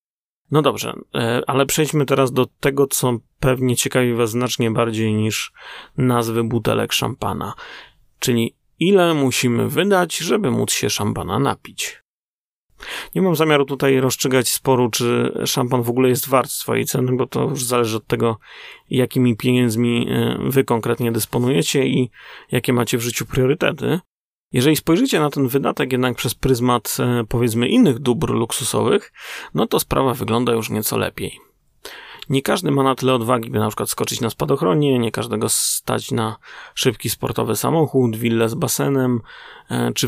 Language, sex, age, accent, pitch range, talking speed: Polish, male, 30-49, native, 115-135 Hz, 150 wpm